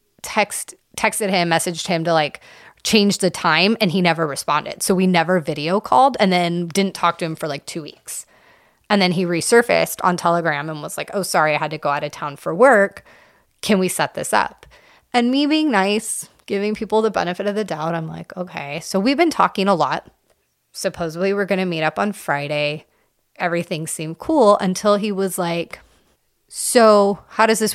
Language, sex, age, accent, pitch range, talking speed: English, female, 30-49, American, 165-205 Hz, 200 wpm